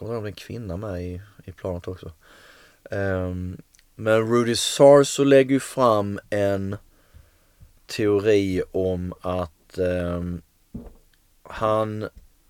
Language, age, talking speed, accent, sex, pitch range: Swedish, 30-49, 95 wpm, native, male, 85-105 Hz